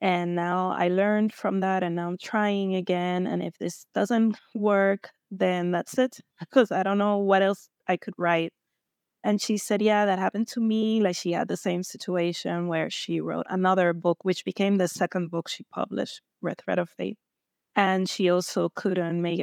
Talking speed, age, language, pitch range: 195 wpm, 20-39, English, 170-200 Hz